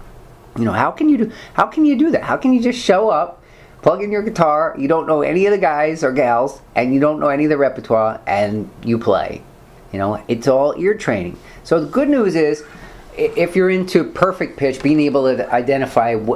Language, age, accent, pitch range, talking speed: English, 40-59, American, 115-160 Hz, 225 wpm